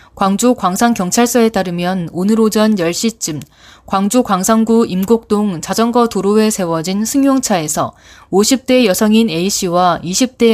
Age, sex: 20-39, female